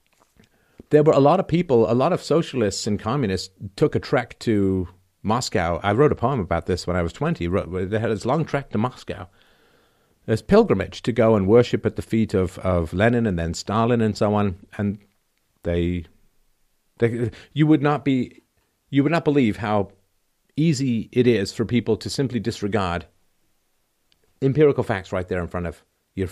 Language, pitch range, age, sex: English, 95-135 Hz, 50-69, male